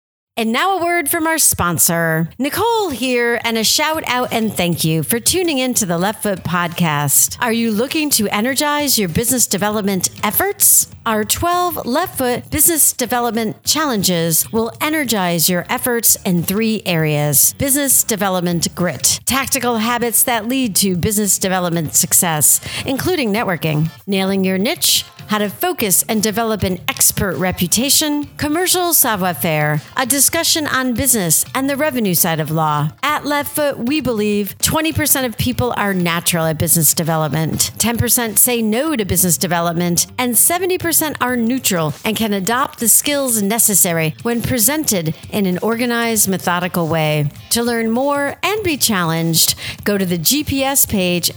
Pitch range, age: 175-260 Hz, 50-69